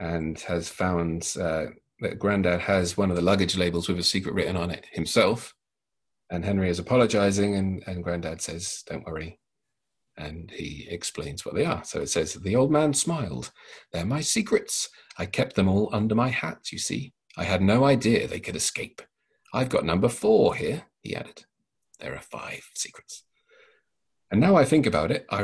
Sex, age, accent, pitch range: male, 40-59, British, 85-130 Hz